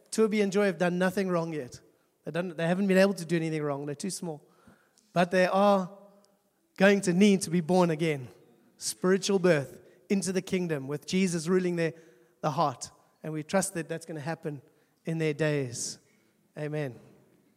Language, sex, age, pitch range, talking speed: English, male, 30-49, 165-200 Hz, 185 wpm